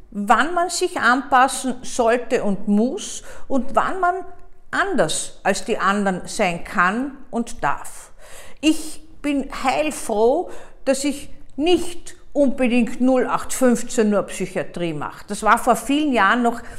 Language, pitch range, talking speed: German, 200-265 Hz, 125 wpm